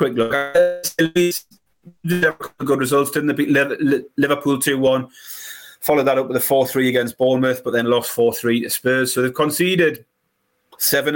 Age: 30-49